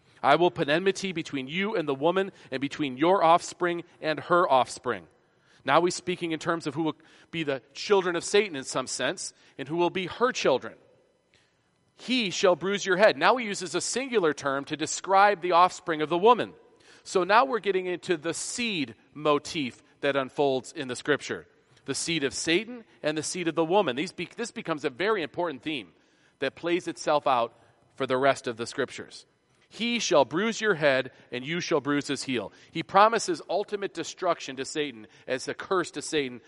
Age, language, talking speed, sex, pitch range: 40-59, English, 190 wpm, male, 130-180 Hz